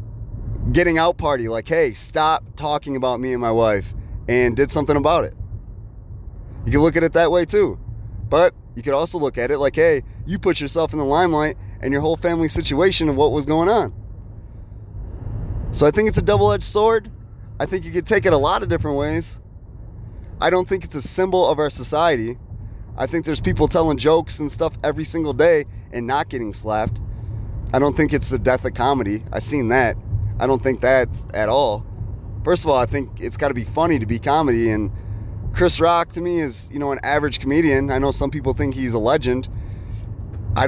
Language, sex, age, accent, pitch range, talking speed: English, male, 30-49, American, 105-155 Hz, 210 wpm